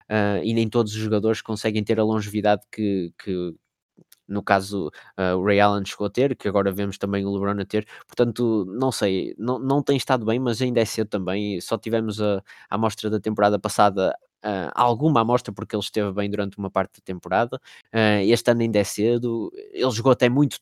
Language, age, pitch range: Portuguese, 20-39, 100-120 Hz